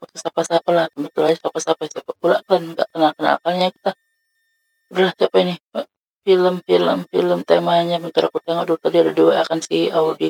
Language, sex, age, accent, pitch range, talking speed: Indonesian, female, 20-39, native, 160-230 Hz, 150 wpm